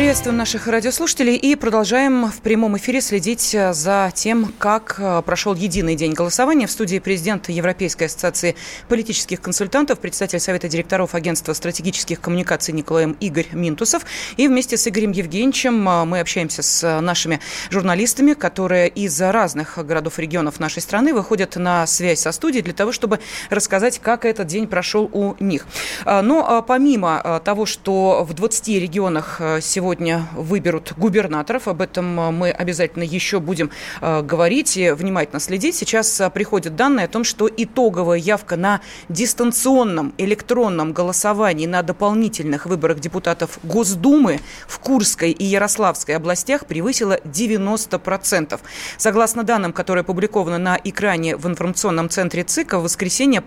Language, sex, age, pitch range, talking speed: Russian, female, 20-39, 170-220 Hz, 140 wpm